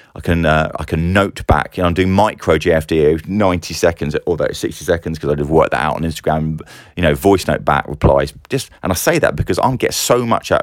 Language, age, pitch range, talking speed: English, 30-49, 75-90 Hz, 245 wpm